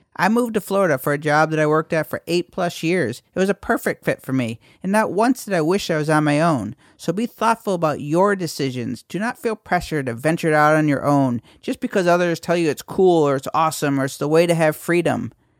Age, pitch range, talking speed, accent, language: 50-69, 130-175 Hz, 260 wpm, American, English